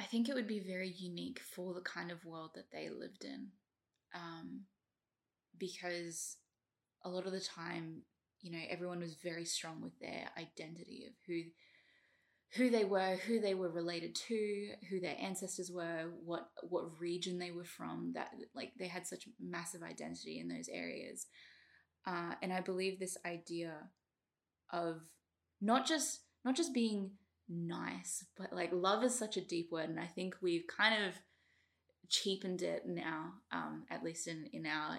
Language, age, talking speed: English, 10-29, 170 wpm